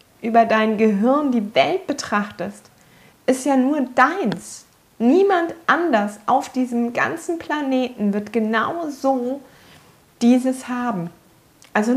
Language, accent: German, German